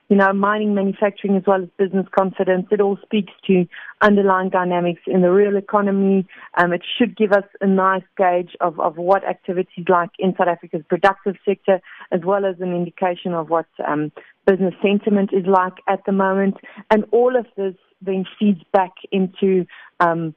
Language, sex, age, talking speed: English, female, 30-49, 180 wpm